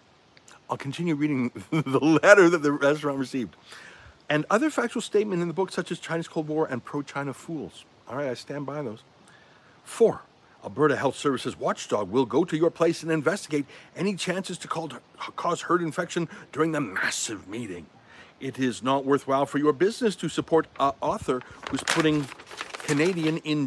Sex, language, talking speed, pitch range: male, English, 170 wpm, 135-185 Hz